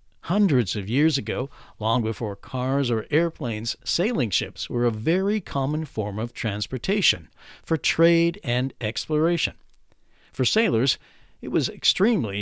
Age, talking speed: 50-69, 130 wpm